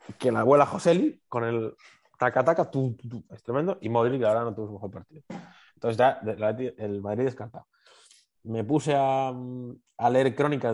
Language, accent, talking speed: Spanish, Spanish, 180 wpm